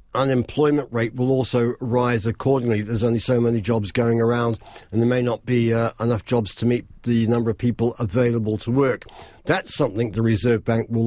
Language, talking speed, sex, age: English, 195 wpm, male, 50-69